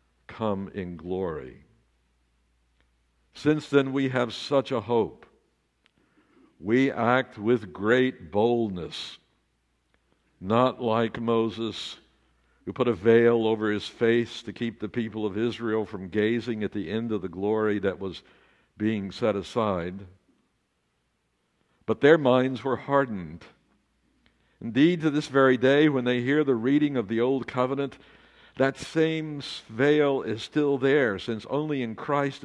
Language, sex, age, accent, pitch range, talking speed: English, male, 60-79, American, 100-140 Hz, 135 wpm